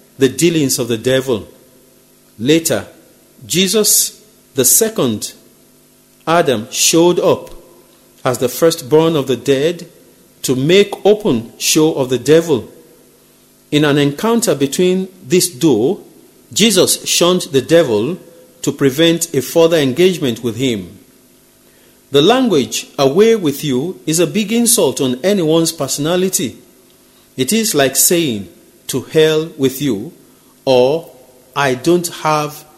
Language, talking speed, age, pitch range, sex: English, 120 wpm, 50-69, 130-185 Hz, male